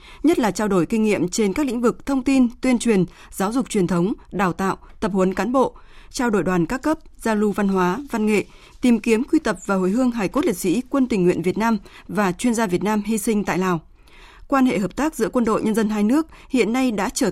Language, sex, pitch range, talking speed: Vietnamese, female, 190-255 Hz, 260 wpm